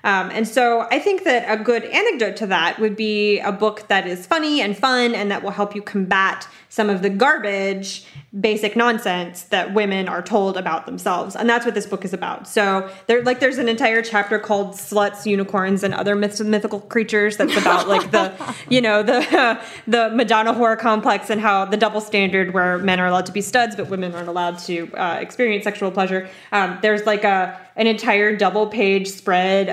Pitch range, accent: 190-225 Hz, American